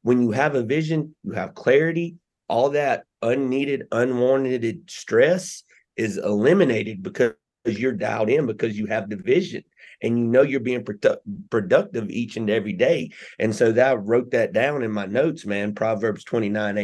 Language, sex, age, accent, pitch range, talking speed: English, male, 30-49, American, 105-115 Hz, 165 wpm